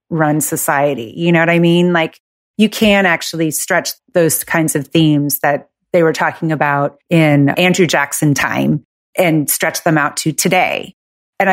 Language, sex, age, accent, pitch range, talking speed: English, female, 30-49, American, 155-185 Hz, 165 wpm